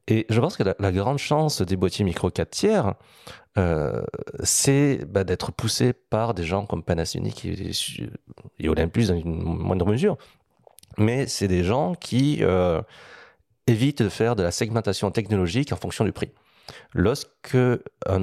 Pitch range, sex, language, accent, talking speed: 90-115 Hz, male, French, French, 160 wpm